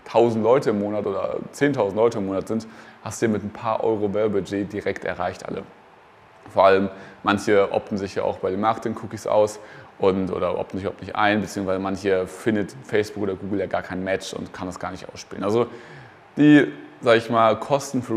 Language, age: German, 20-39